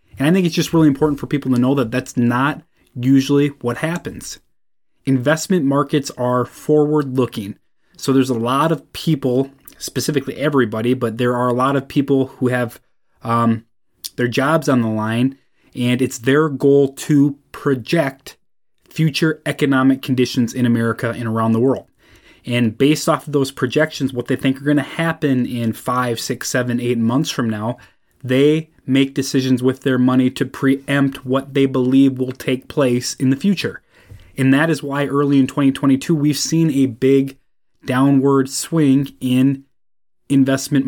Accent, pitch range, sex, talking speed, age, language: American, 125-140 Hz, male, 165 wpm, 30-49, English